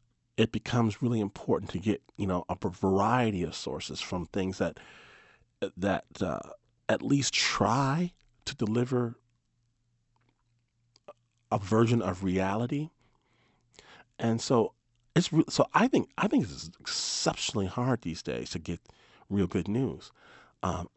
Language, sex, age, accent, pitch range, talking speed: English, male, 40-59, American, 95-120 Hz, 130 wpm